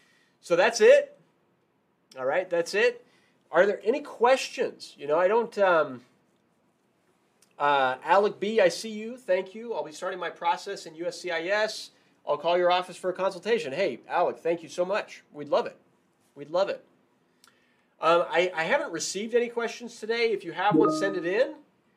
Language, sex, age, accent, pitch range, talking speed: English, male, 30-49, American, 165-200 Hz, 180 wpm